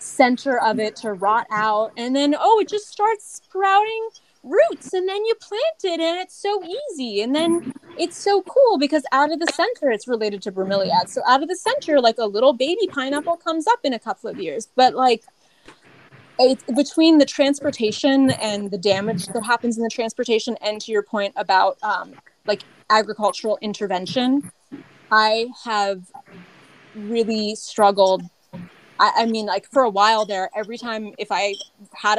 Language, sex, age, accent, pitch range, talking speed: English, female, 20-39, American, 205-280 Hz, 170 wpm